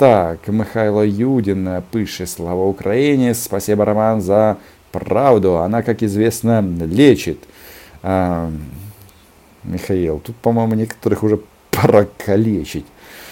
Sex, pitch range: male, 100-135 Hz